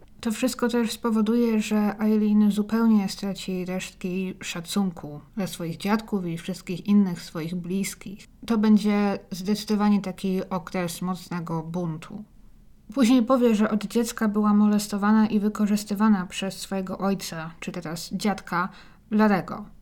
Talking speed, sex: 125 wpm, female